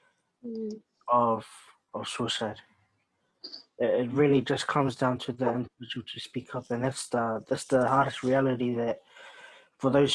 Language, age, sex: English, 20-39, male